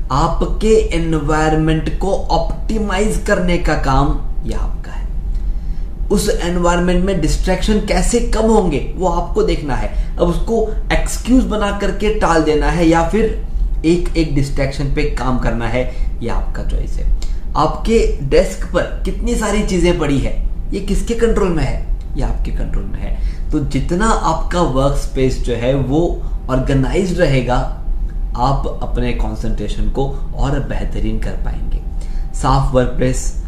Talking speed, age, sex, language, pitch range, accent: 145 wpm, 20-39, male, Hindi, 120-175 Hz, native